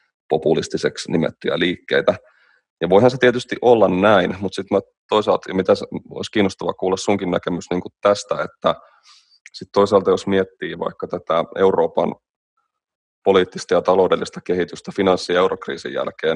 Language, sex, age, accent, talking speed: Finnish, male, 30-49, native, 135 wpm